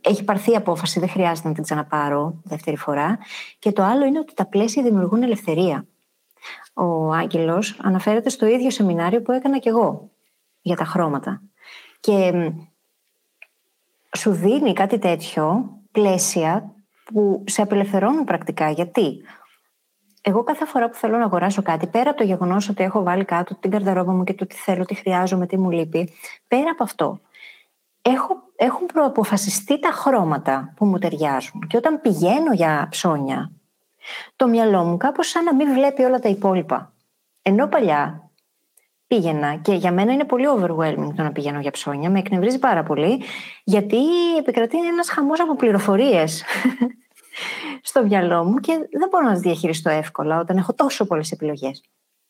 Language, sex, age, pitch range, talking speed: Greek, female, 30-49, 170-240 Hz, 155 wpm